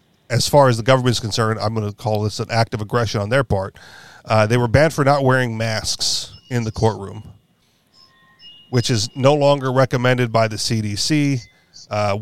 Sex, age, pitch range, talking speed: male, 40-59, 105-120 Hz, 190 wpm